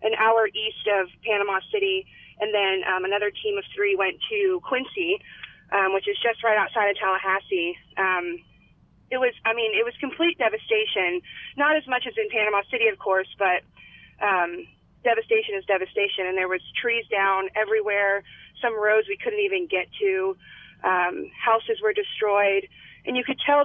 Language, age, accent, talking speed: English, 30-49, American, 175 wpm